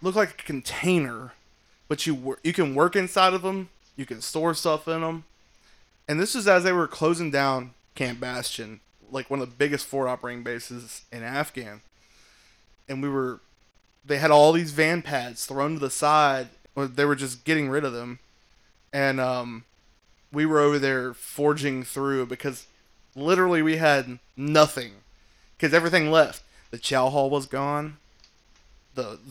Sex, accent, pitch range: male, American, 125-155 Hz